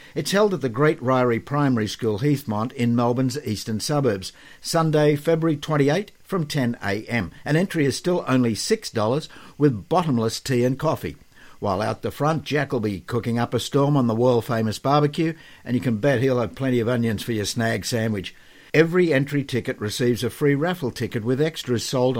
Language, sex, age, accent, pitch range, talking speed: English, male, 60-79, Australian, 115-145 Hz, 185 wpm